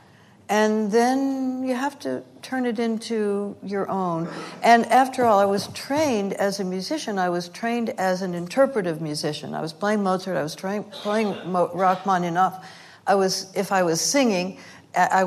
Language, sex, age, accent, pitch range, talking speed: English, female, 60-79, American, 170-215 Hz, 170 wpm